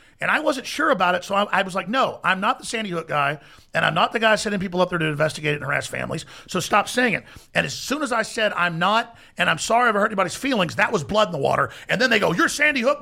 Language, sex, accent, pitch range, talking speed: English, male, American, 200-250 Hz, 300 wpm